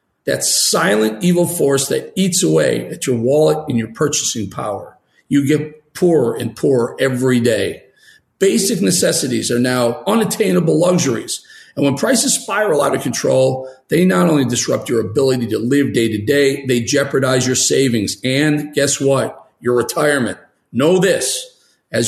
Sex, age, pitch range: male, 40-59, 125-170 Hz